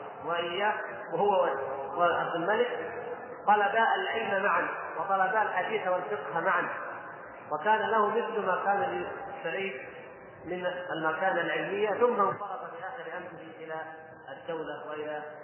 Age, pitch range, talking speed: 30-49, 160-220 Hz, 115 wpm